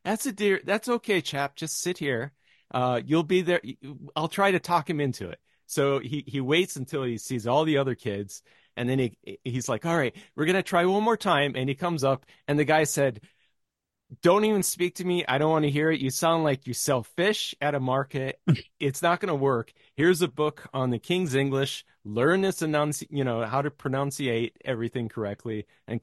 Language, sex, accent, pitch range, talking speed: English, male, American, 105-150 Hz, 220 wpm